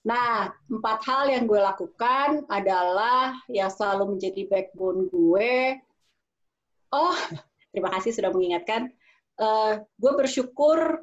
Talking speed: 110 wpm